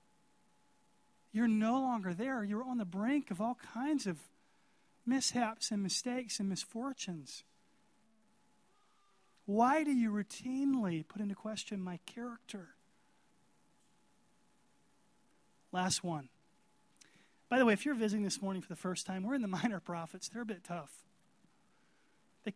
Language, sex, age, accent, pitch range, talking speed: English, male, 30-49, American, 185-215 Hz, 135 wpm